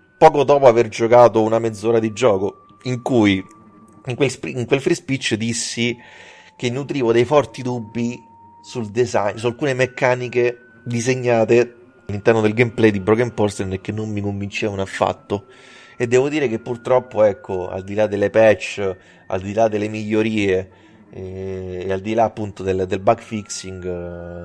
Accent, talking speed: native, 160 wpm